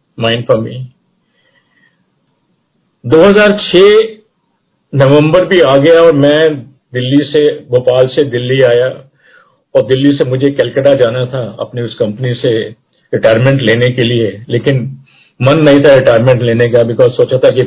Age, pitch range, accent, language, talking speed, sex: 50-69, 120-150 Hz, native, Hindi, 140 wpm, male